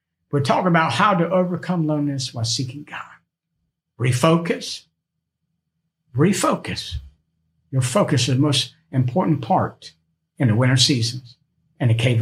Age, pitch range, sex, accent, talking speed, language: 60-79, 120-160 Hz, male, American, 130 wpm, English